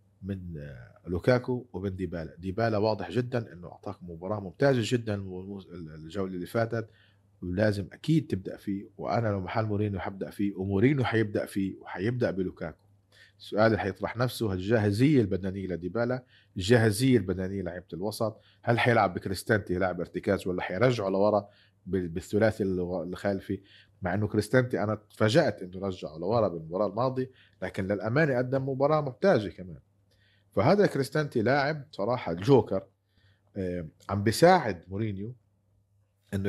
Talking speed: 125 wpm